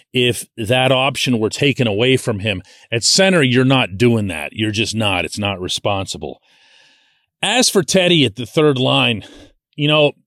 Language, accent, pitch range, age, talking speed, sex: English, American, 110-140 Hz, 40-59, 170 wpm, male